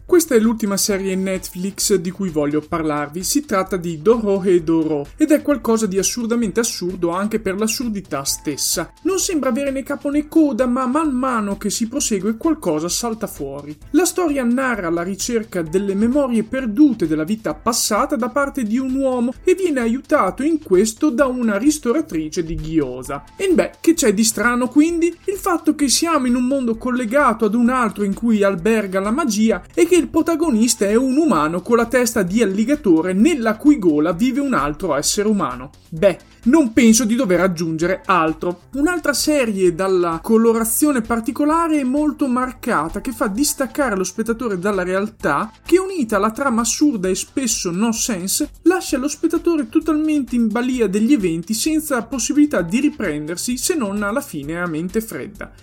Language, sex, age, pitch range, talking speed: Italian, male, 30-49, 195-285 Hz, 175 wpm